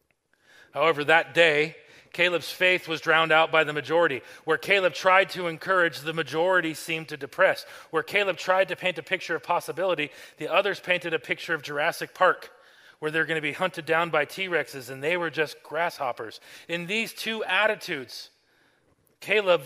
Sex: male